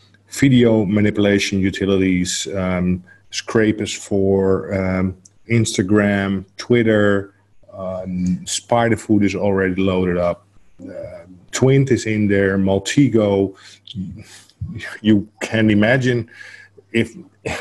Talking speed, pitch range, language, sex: 90 wpm, 90-105 Hz, English, male